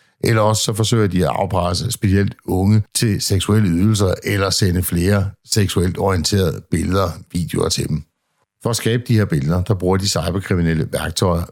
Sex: male